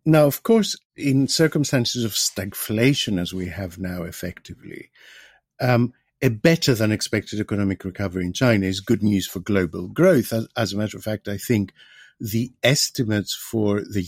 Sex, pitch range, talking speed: male, 100-130 Hz, 160 wpm